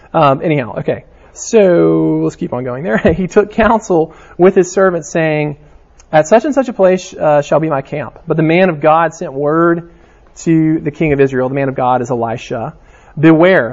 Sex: male